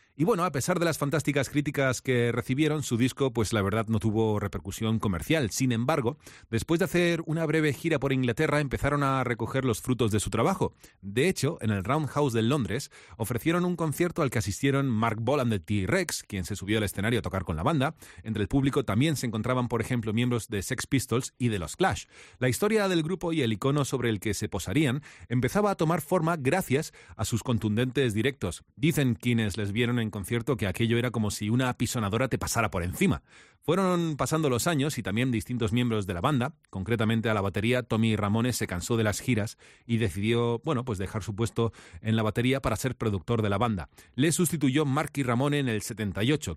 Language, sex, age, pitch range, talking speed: Spanish, male, 30-49, 110-140 Hz, 210 wpm